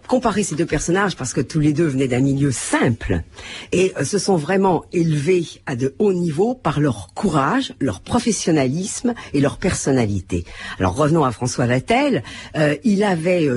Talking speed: 170 wpm